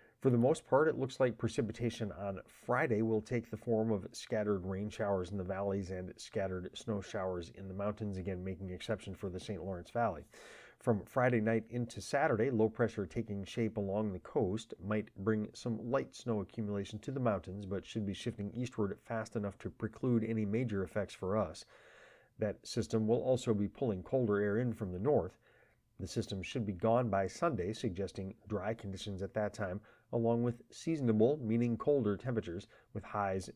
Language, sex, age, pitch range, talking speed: English, male, 30-49, 100-115 Hz, 185 wpm